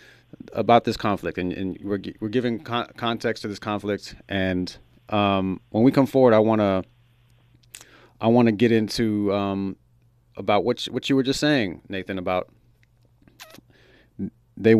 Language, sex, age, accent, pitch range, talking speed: English, male, 30-49, American, 95-125 Hz, 150 wpm